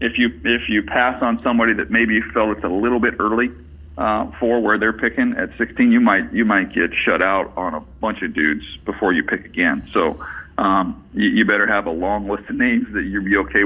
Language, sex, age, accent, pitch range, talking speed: English, male, 40-59, American, 100-120 Hz, 235 wpm